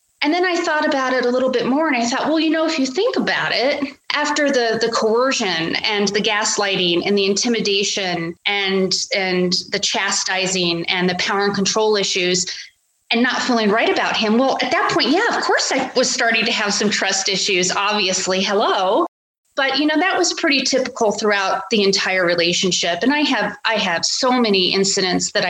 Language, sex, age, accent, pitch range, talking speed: English, female, 30-49, American, 195-255 Hz, 200 wpm